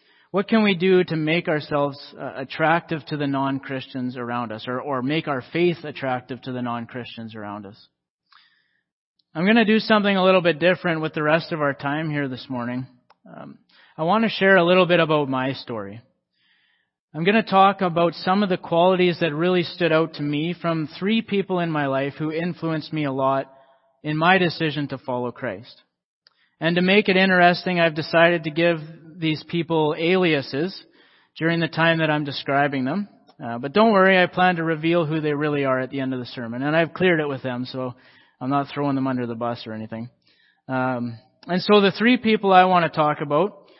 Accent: American